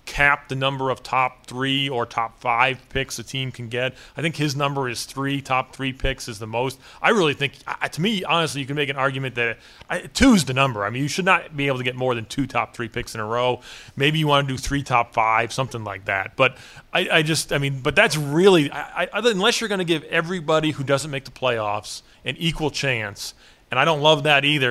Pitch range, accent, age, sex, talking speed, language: 120-145 Hz, American, 30-49, male, 255 wpm, English